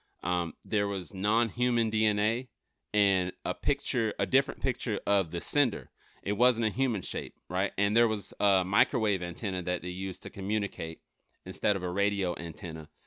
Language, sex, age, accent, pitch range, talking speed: English, male, 30-49, American, 95-120 Hz, 165 wpm